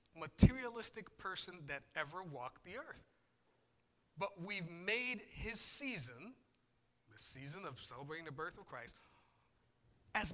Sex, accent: male, American